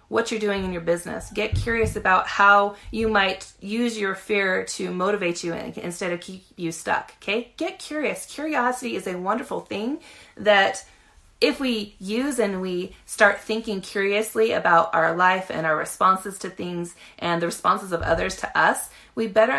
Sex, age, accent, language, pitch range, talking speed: female, 30-49, American, English, 190-225 Hz, 175 wpm